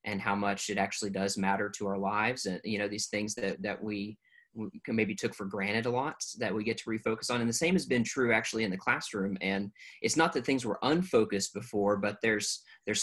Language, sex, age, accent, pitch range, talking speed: English, male, 30-49, American, 100-125 Hz, 245 wpm